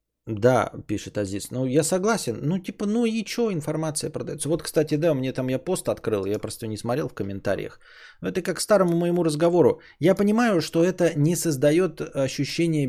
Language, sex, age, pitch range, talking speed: Bulgarian, male, 20-39, 140-185 Hz, 180 wpm